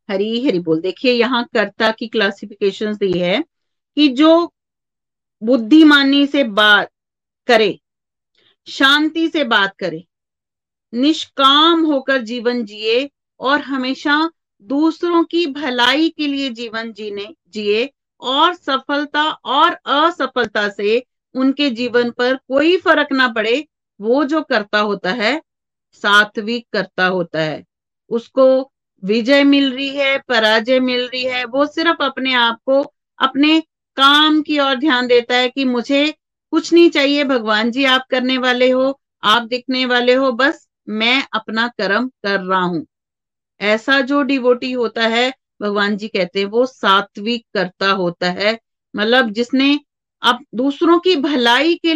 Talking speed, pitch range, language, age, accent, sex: 135 wpm, 215-280 Hz, Hindi, 40-59, native, female